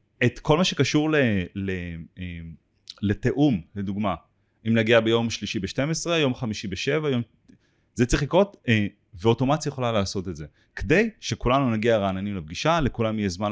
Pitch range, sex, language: 100-125 Hz, male, Hebrew